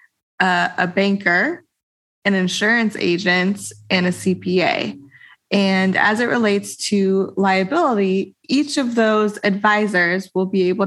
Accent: American